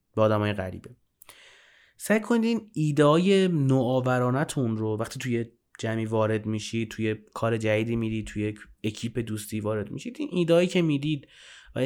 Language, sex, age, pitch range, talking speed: Persian, male, 30-49, 110-155 Hz, 145 wpm